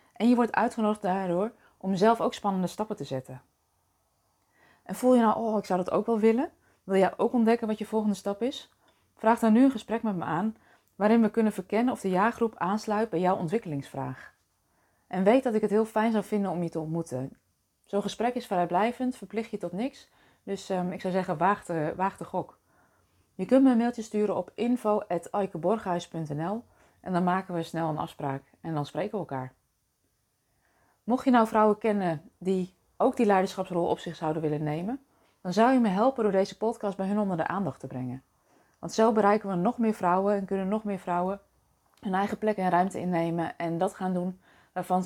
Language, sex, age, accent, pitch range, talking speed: Dutch, female, 20-39, Dutch, 165-220 Hz, 205 wpm